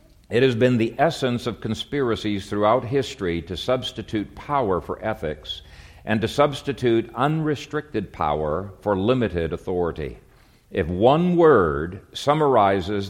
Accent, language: American, English